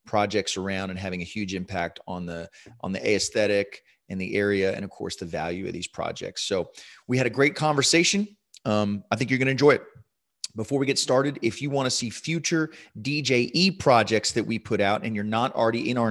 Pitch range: 100-130 Hz